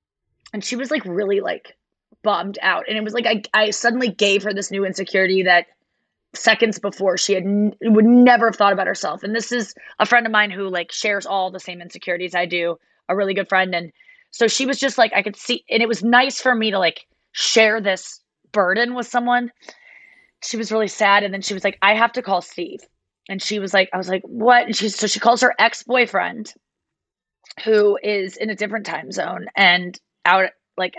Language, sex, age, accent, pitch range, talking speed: English, female, 20-39, American, 200-260 Hz, 220 wpm